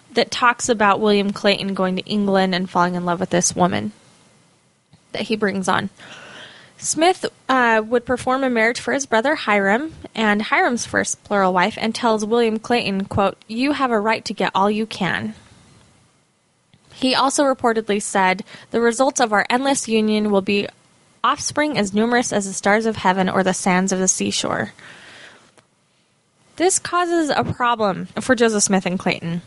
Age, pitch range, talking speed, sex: 10-29, 195-250 Hz, 170 wpm, female